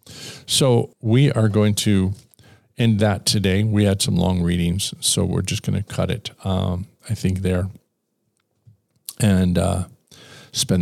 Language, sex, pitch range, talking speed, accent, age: English, male, 95-120 Hz, 150 wpm, American, 50-69